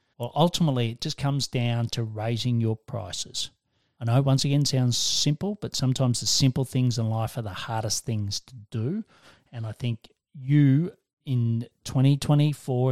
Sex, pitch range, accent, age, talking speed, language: male, 115-135 Hz, Australian, 40-59, 165 wpm, English